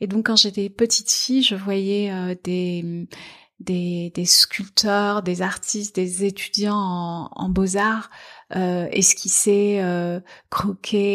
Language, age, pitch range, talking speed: French, 30-49, 180-210 Hz, 135 wpm